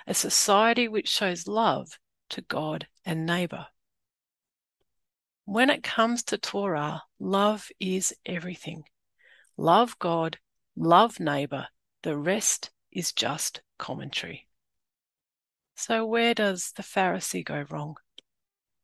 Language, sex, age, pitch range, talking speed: English, female, 40-59, 180-225 Hz, 105 wpm